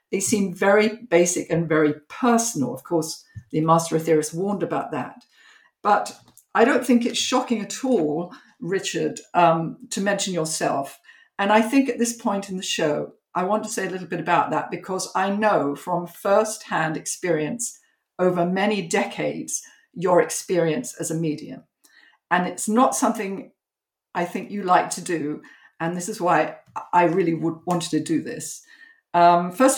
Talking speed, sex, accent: 165 wpm, female, British